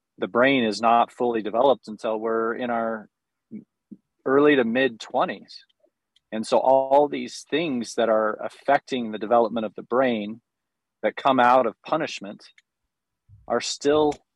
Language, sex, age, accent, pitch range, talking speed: English, male, 40-59, American, 110-140 Hz, 140 wpm